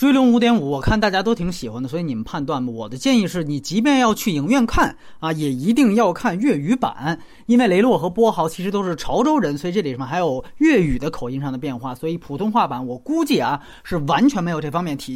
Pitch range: 175-270 Hz